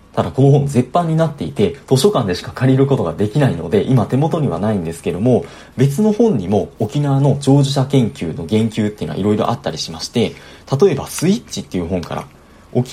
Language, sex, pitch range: Japanese, male, 100-160 Hz